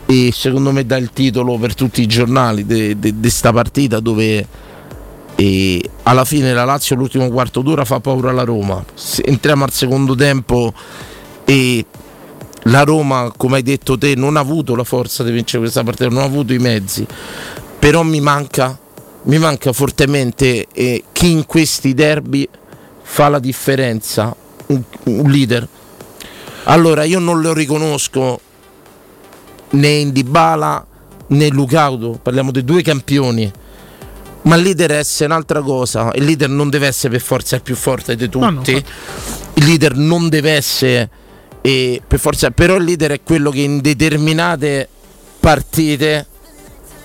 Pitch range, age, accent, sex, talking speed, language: 125-155 Hz, 50-69, native, male, 150 wpm, Italian